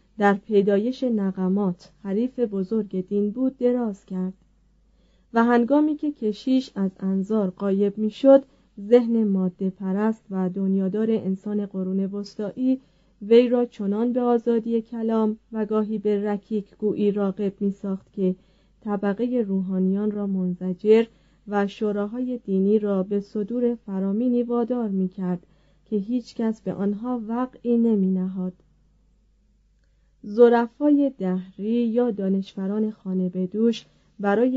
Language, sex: Persian, female